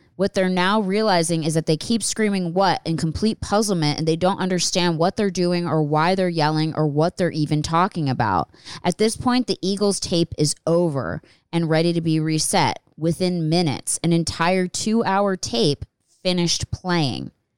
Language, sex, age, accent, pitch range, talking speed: English, female, 20-39, American, 155-185 Hz, 175 wpm